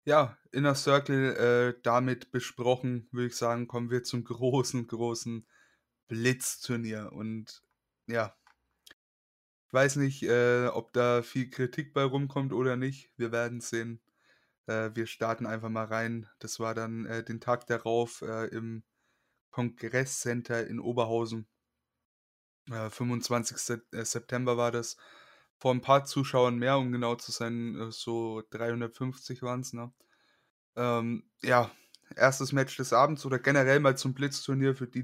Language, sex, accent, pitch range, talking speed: German, male, German, 115-135 Hz, 145 wpm